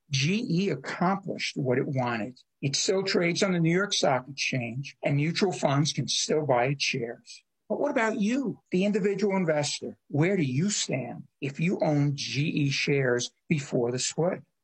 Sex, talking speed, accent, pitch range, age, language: male, 170 wpm, American, 140-180 Hz, 60-79, English